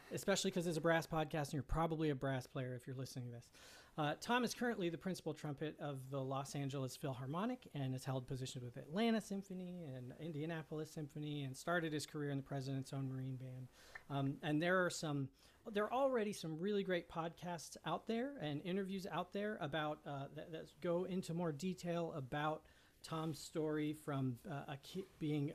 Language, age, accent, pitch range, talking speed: English, 40-59, American, 140-170 Hz, 195 wpm